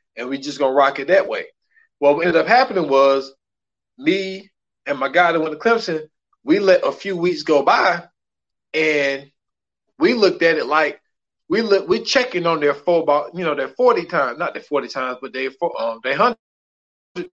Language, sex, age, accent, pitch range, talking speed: English, male, 20-39, American, 150-225 Hz, 195 wpm